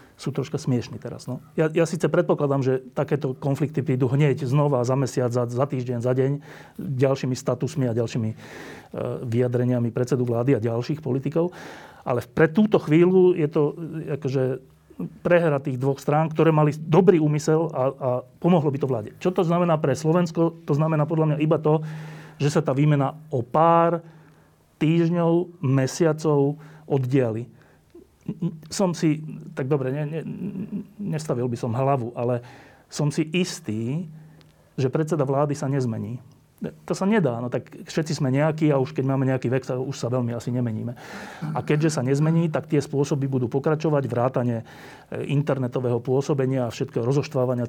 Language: Slovak